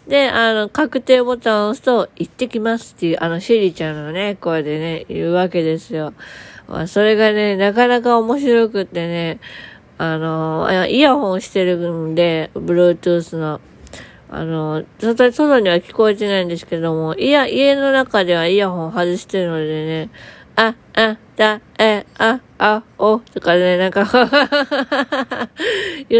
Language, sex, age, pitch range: Japanese, female, 20-39, 170-235 Hz